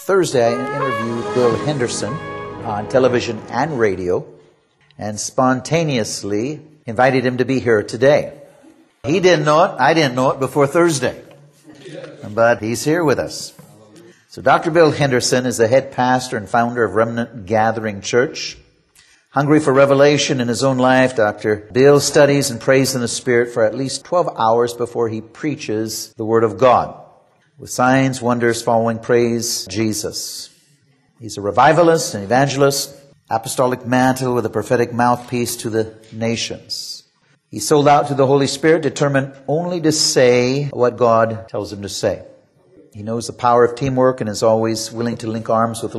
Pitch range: 115-140 Hz